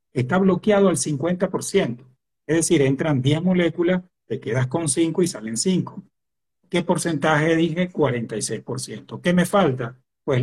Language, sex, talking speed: Spanish, male, 140 wpm